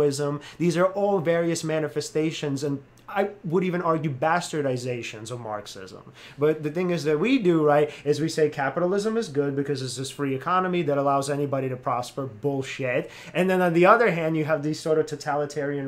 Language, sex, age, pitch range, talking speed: English, male, 30-49, 135-165 Hz, 190 wpm